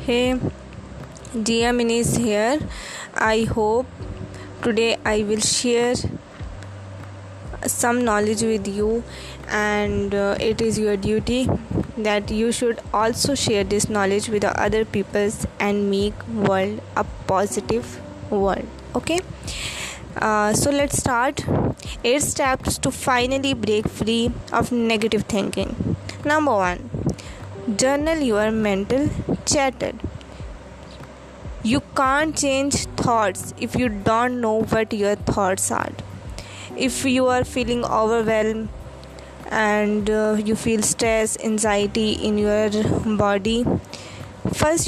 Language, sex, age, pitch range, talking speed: Urdu, female, 20-39, 210-245 Hz, 110 wpm